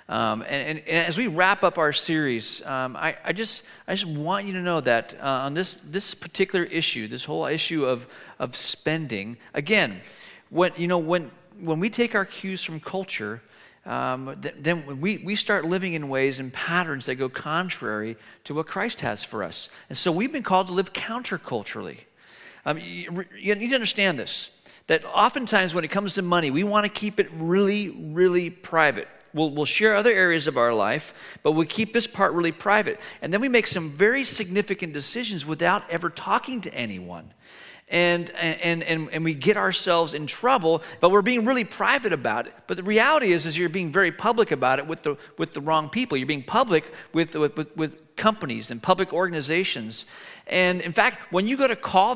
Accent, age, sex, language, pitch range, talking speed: American, 40-59, male, English, 155-200 Hz, 205 wpm